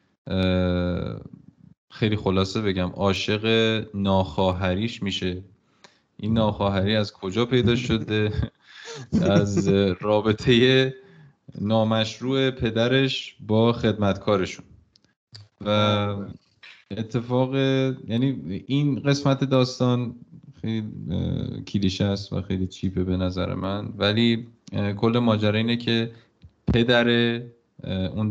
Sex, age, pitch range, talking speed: male, 20-39, 95-115 Hz, 85 wpm